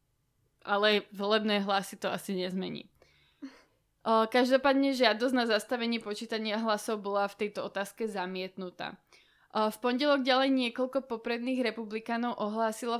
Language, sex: Slovak, female